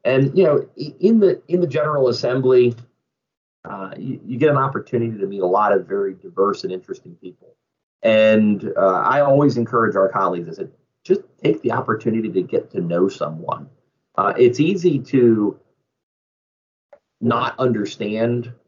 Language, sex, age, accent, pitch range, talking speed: English, male, 30-49, American, 105-140 Hz, 155 wpm